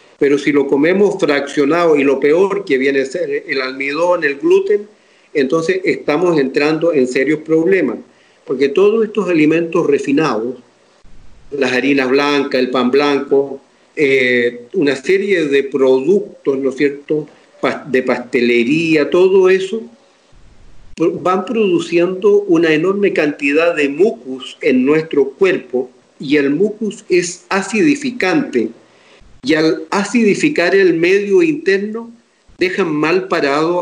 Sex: male